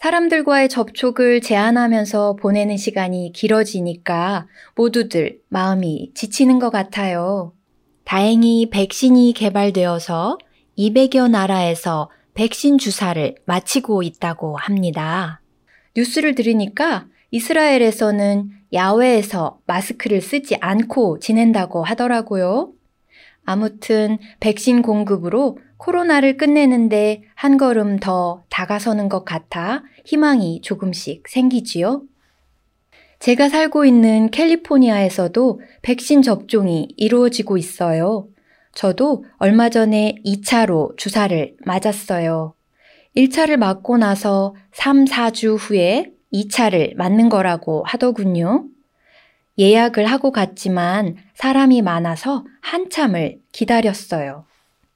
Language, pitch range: Korean, 190-255 Hz